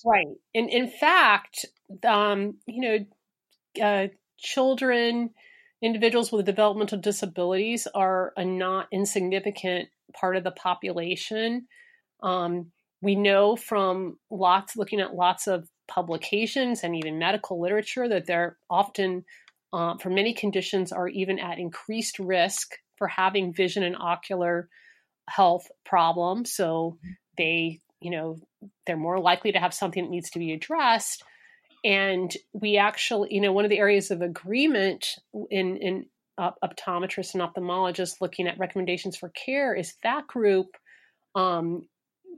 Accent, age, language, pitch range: American, 30-49, English, 180-210 Hz